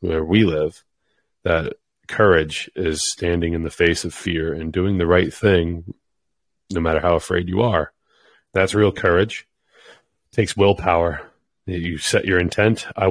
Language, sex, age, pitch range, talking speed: English, male, 30-49, 80-95 Hz, 155 wpm